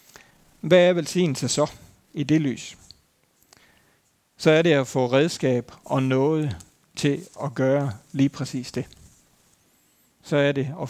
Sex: male